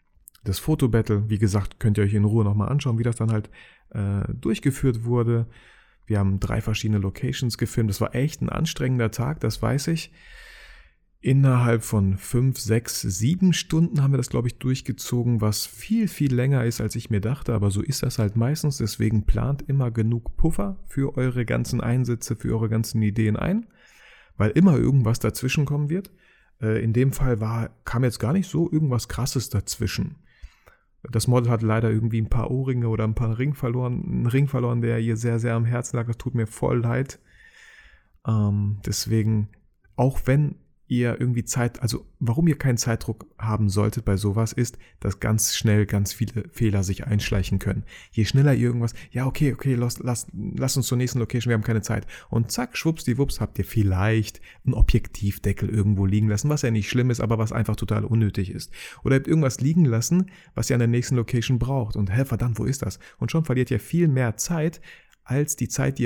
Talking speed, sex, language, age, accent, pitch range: 200 wpm, male, German, 30-49, German, 110-135 Hz